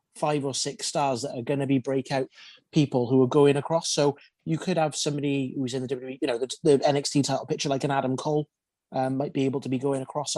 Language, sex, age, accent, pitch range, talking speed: English, male, 30-49, British, 130-155 Hz, 250 wpm